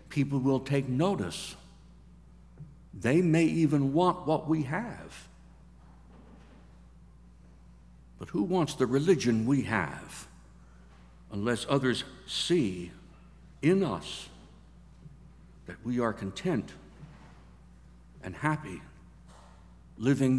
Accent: American